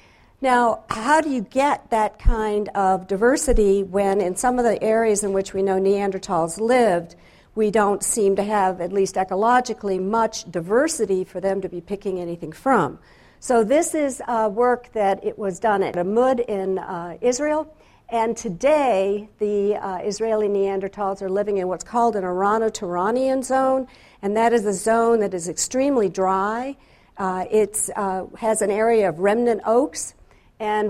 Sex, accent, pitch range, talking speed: female, American, 190-225 Hz, 165 wpm